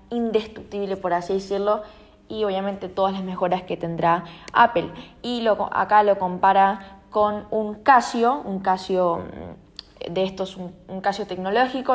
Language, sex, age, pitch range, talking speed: Spanish, female, 10-29, 190-230 Hz, 140 wpm